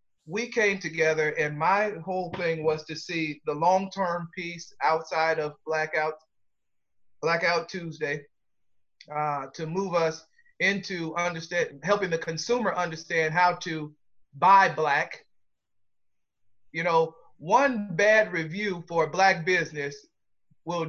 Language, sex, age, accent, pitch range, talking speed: English, male, 30-49, American, 155-190 Hz, 120 wpm